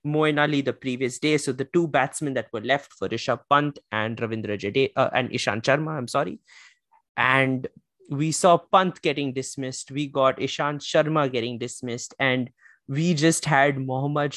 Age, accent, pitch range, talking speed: 20-39, Indian, 135-175 Hz, 165 wpm